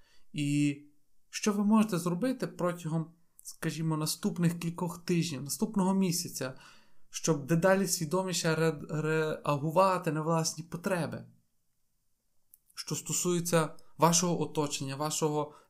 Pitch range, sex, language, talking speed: 150-185 Hz, male, Ukrainian, 90 wpm